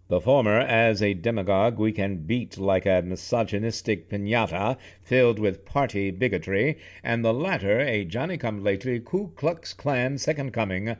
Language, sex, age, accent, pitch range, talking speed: English, male, 60-79, American, 100-130 Hz, 140 wpm